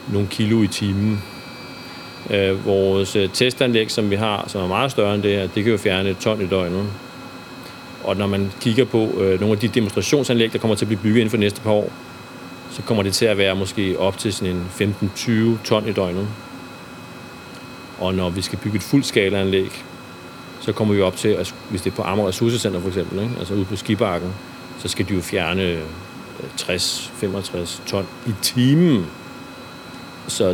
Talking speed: 190 wpm